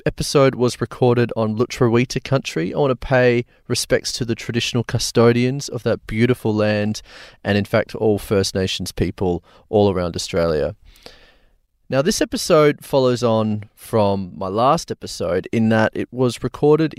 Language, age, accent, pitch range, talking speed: English, 30-49, Australian, 110-140 Hz, 150 wpm